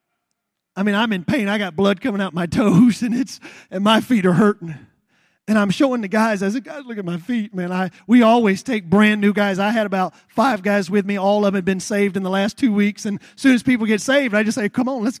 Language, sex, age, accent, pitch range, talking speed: English, male, 30-49, American, 175-220 Hz, 275 wpm